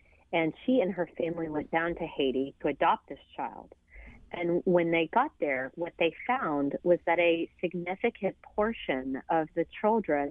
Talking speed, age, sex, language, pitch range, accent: 170 wpm, 40-59, female, English, 155-190 Hz, American